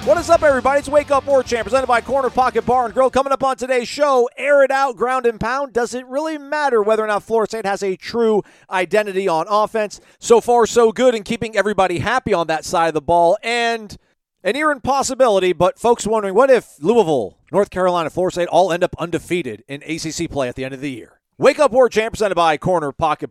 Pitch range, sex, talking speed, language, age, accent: 145-230 Hz, male, 235 wpm, English, 40-59, American